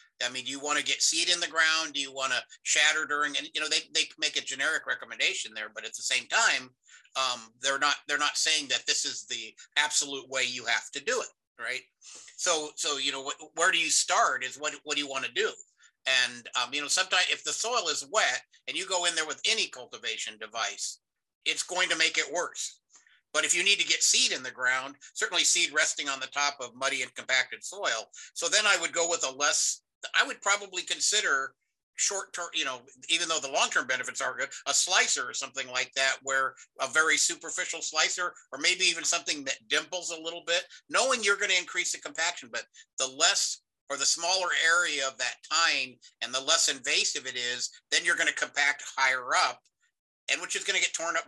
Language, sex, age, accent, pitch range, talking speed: English, male, 50-69, American, 135-175 Hz, 225 wpm